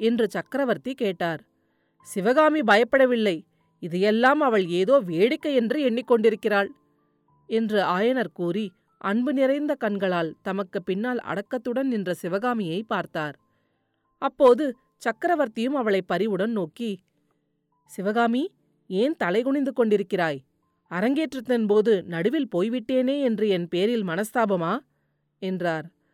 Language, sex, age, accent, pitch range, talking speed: Tamil, female, 30-49, native, 185-255 Hz, 95 wpm